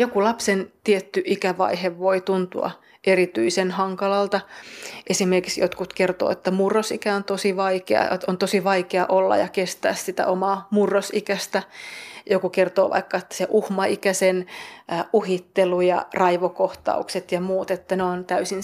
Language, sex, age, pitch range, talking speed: Finnish, female, 30-49, 185-195 Hz, 130 wpm